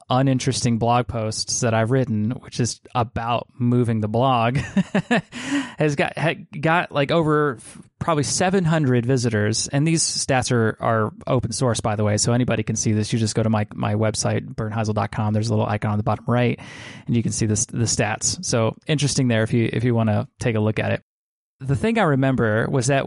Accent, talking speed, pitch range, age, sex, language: American, 205 wpm, 115-145 Hz, 20-39, male, English